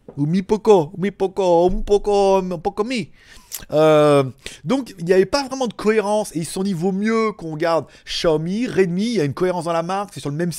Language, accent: French, French